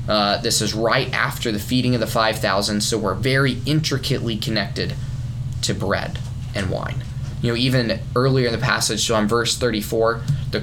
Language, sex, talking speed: English, male, 175 wpm